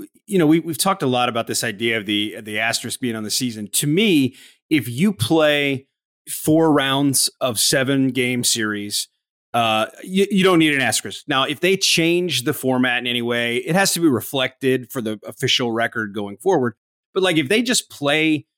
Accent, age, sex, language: American, 30-49, male, English